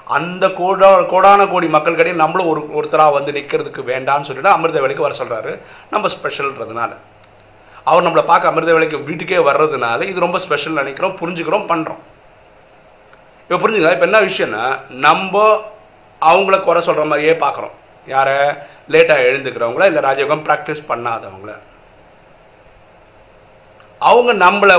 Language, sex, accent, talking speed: Tamil, male, native, 40 wpm